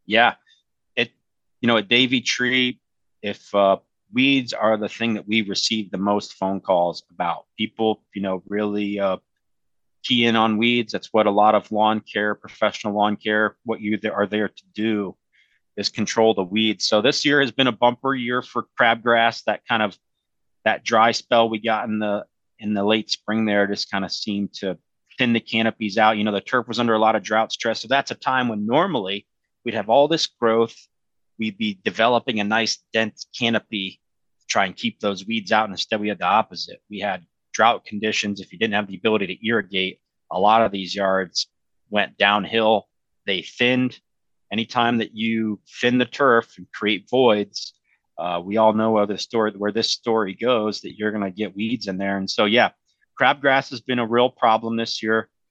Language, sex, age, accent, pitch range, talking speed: English, male, 30-49, American, 105-115 Hz, 200 wpm